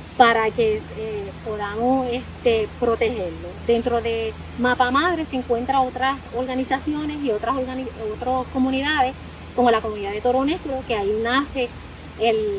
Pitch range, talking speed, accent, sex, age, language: 225-265 Hz, 140 wpm, American, female, 20-39, Spanish